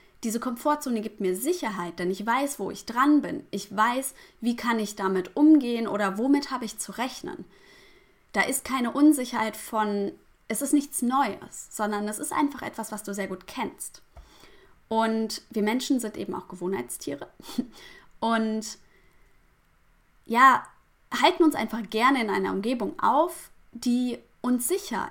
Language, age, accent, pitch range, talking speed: German, 20-39, German, 205-265 Hz, 155 wpm